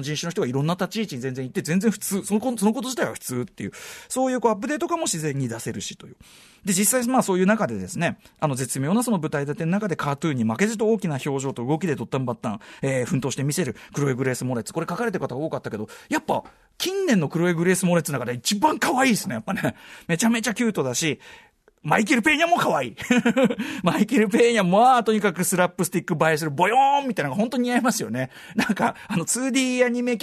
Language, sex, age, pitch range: Japanese, male, 40-59, 150-245 Hz